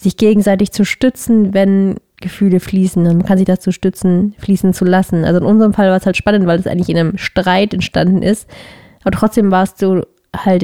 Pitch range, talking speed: 195-220 Hz, 210 wpm